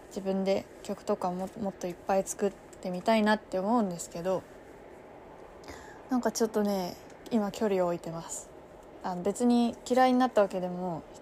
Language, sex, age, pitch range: Japanese, female, 20-39, 185-230 Hz